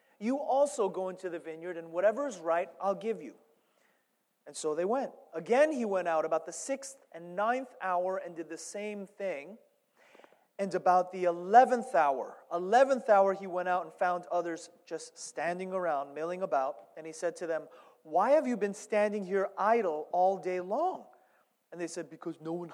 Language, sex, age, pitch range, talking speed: English, male, 30-49, 170-220 Hz, 185 wpm